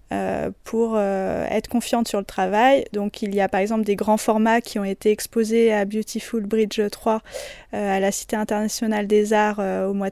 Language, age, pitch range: French, 20-39, 205-235 Hz